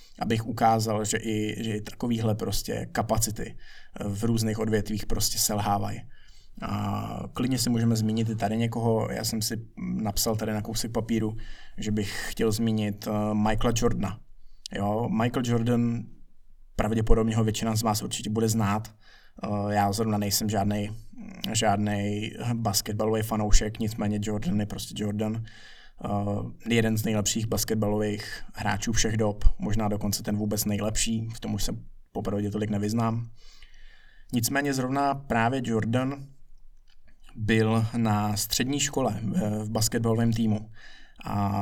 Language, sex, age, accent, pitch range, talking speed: Czech, male, 20-39, native, 105-115 Hz, 130 wpm